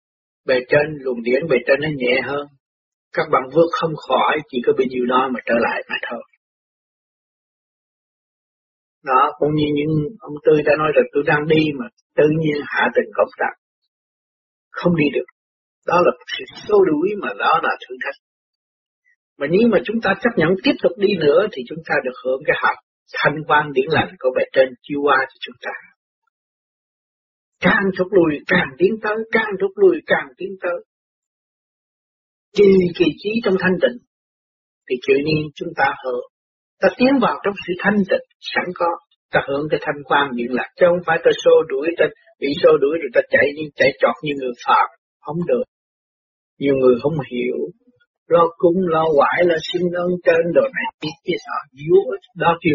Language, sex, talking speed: Vietnamese, male, 190 wpm